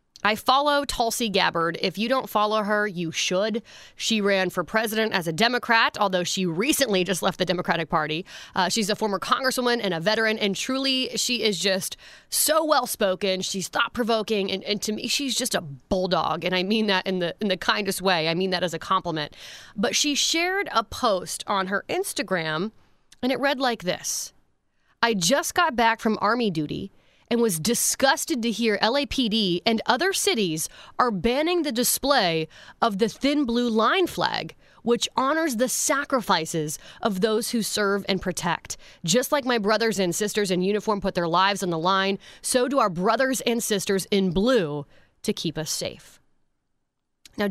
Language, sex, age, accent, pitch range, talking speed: English, female, 20-39, American, 185-240 Hz, 180 wpm